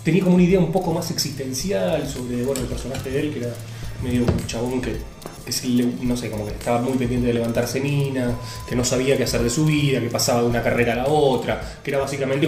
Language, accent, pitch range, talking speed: Spanish, Argentinian, 115-145 Hz, 225 wpm